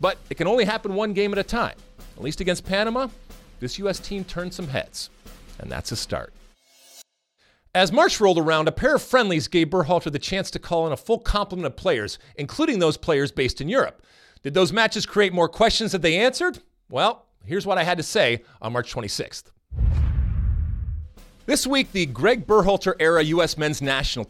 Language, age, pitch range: English, 40-59, 135-205 Hz